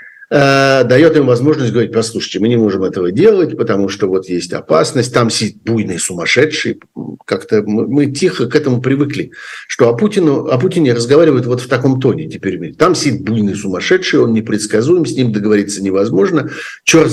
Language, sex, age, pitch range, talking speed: Russian, male, 50-69, 110-170 Hz, 170 wpm